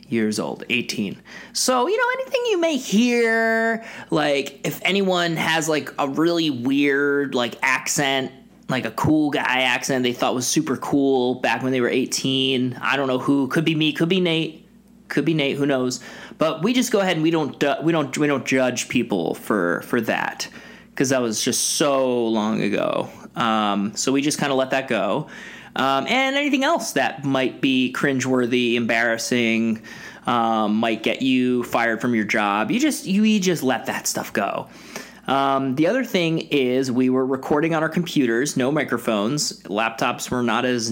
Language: English